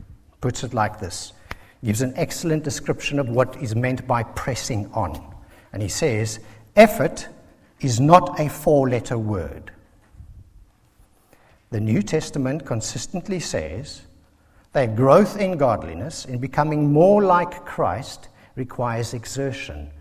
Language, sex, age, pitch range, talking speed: English, male, 60-79, 100-140 Hz, 125 wpm